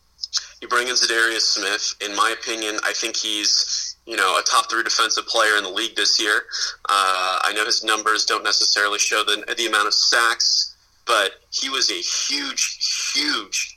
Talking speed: 185 wpm